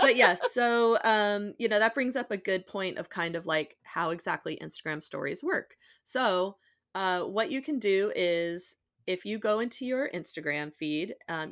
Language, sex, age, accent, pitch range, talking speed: English, female, 30-49, American, 165-205 Hz, 190 wpm